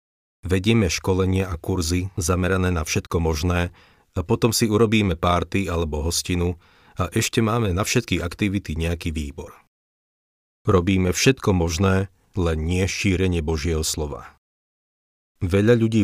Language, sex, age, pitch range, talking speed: Slovak, male, 40-59, 80-100 Hz, 125 wpm